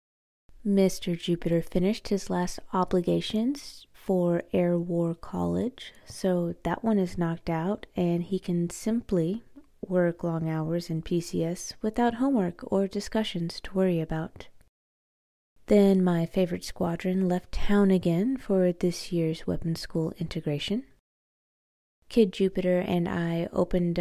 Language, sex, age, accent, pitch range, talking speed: English, female, 20-39, American, 170-200 Hz, 125 wpm